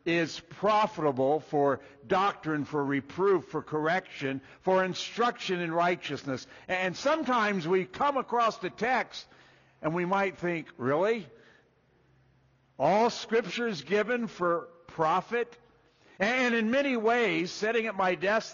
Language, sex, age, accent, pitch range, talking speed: English, male, 60-79, American, 135-195 Hz, 125 wpm